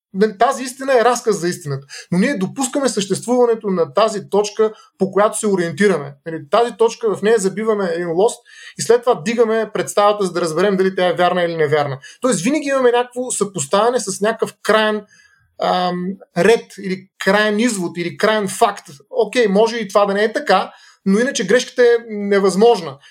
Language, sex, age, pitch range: Bulgarian, male, 30-49, 180-235 Hz